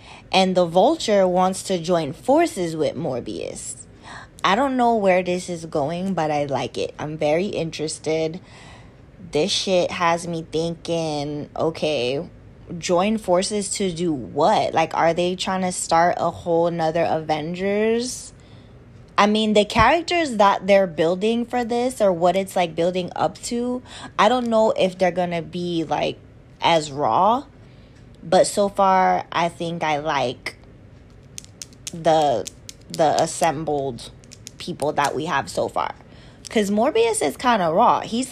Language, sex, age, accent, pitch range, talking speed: English, female, 20-39, American, 160-215 Hz, 145 wpm